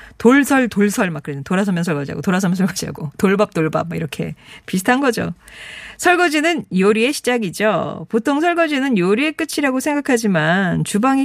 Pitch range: 195-320 Hz